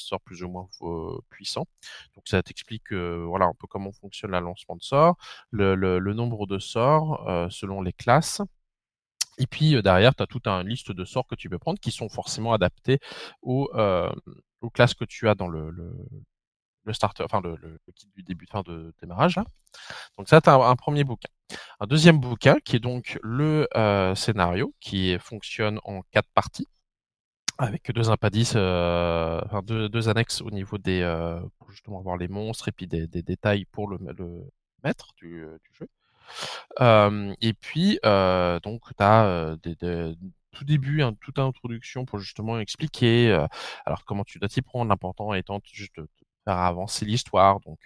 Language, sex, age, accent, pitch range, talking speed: French, male, 20-39, French, 90-120 Hz, 195 wpm